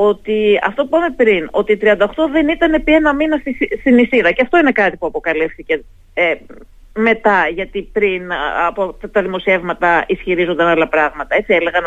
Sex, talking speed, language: female, 170 wpm, Greek